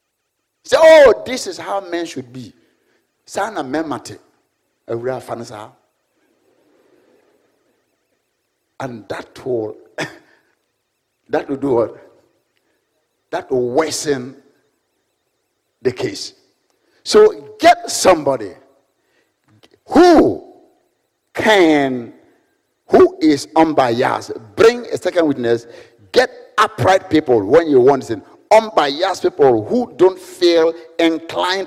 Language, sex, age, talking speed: English, male, 60-79, 90 wpm